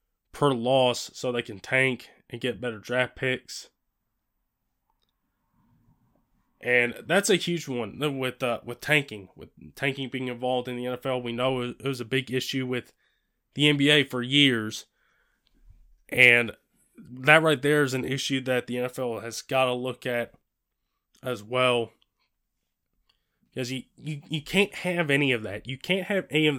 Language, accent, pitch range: English, American, 125-150 Hz